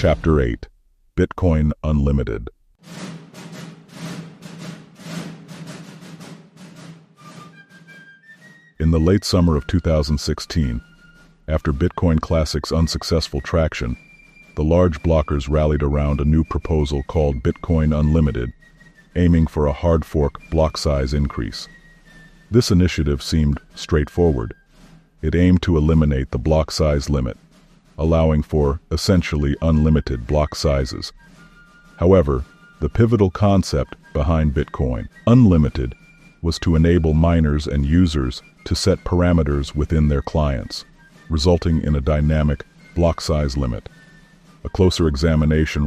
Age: 50-69